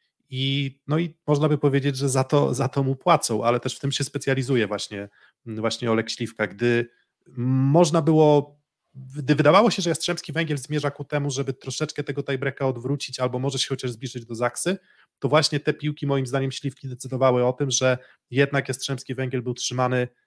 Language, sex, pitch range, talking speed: Polish, male, 125-150 Hz, 185 wpm